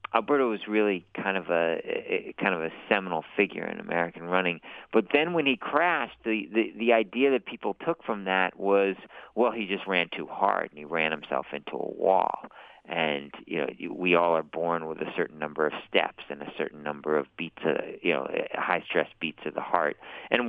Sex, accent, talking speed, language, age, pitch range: male, American, 200 wpm, English, 40-59, 85-115 Hz